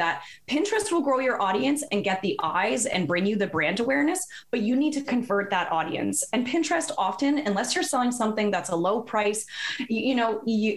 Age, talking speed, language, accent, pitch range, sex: 20-39, 210 wpm, English, American, 180-230 Hz, female